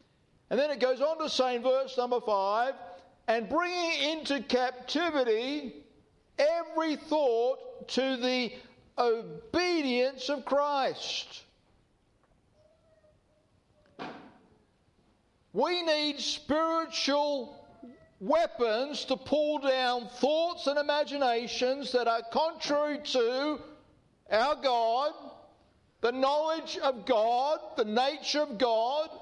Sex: male